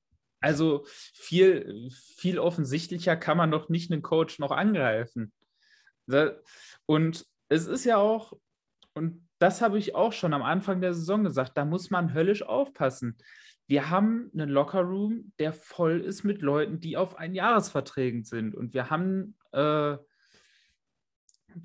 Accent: German